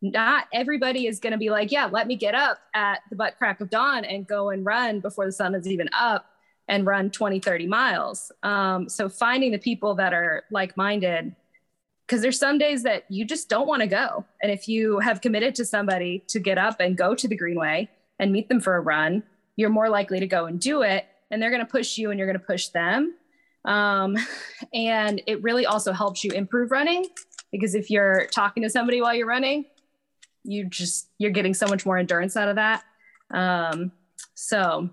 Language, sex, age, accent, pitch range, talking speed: English, female, 20-39, American, 190-235 Hz, 205 wpm